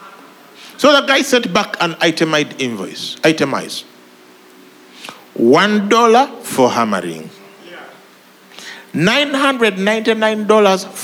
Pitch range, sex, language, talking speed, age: 200-285 Hz, male, English, 70 wpm, 50-69